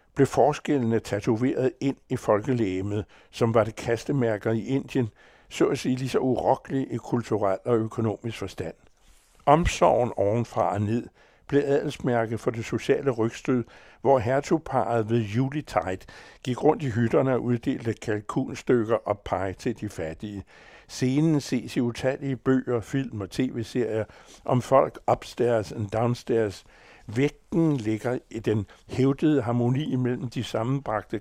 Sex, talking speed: male, 135 wpm